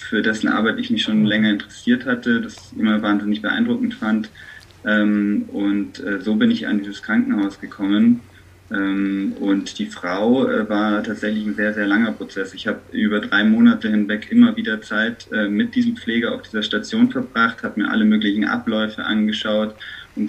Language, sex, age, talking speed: German, male, 20-39, 165 wpm